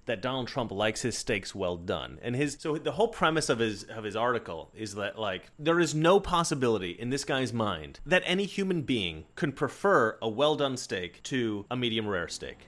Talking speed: 215 wpm